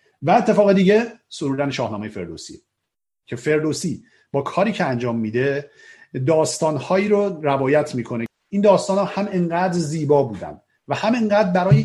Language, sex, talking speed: Persian, male, 140 wpm